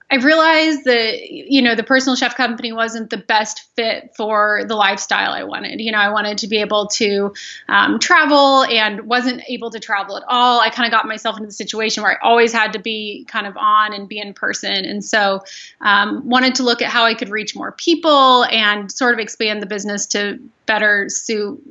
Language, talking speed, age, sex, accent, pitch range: English, 220 wpm, 20-39, female, American, 210-255 Hz